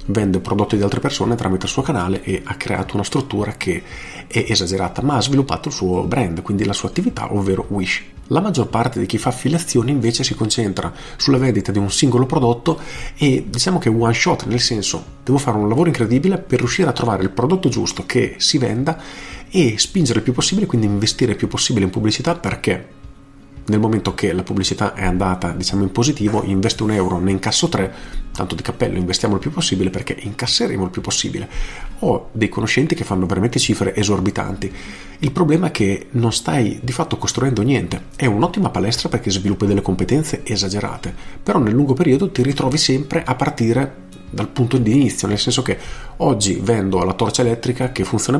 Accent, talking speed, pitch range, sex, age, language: native, 195 wpm, 95-130 Hz, male, 40-59, Italian